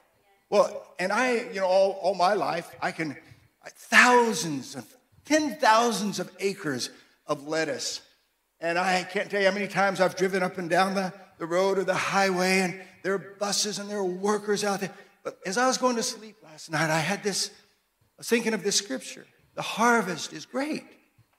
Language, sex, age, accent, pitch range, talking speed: English, male, 50-69, American, 165-215 Hz, 195 wpm